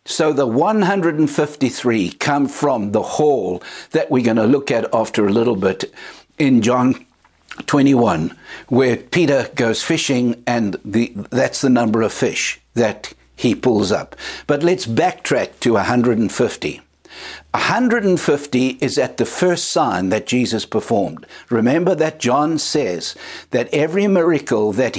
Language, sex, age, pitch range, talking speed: English, male, 60-79, 120-170 Hz, 135 wpm